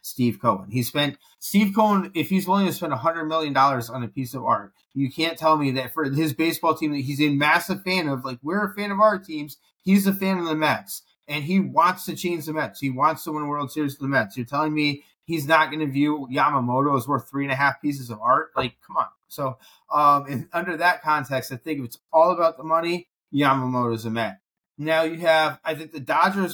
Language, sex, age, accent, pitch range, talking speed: English, male, 30-49, American, 135-160 Hz, 240 wpm